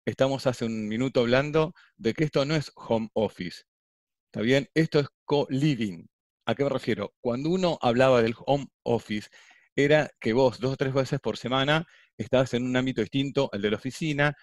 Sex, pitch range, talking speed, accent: male, 115-150 Hz, 185 wpm, Argentinian